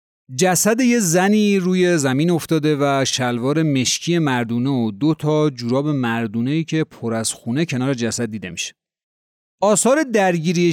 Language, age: Persian, 30-49